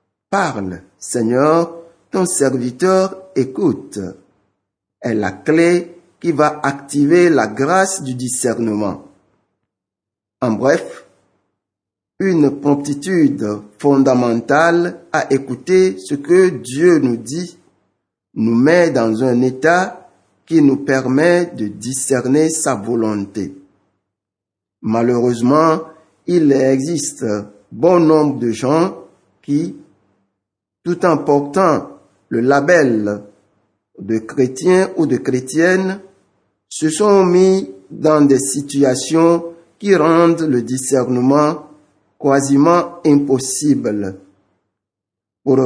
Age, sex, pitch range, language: 60-79, male, 105-165 Hz, French